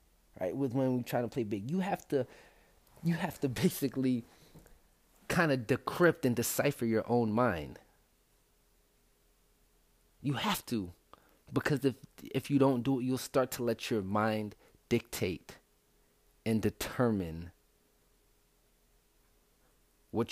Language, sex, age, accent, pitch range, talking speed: English, male, 30-49, American, 105-140 Hz, 125 wpm